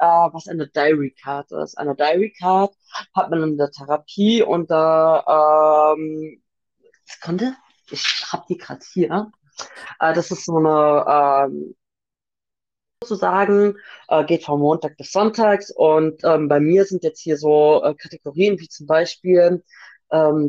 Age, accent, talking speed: 30-49, German, 140 wpm